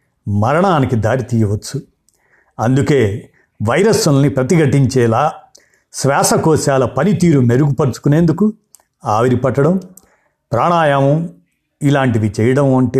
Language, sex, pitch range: Telugu, male, 125-175 Hz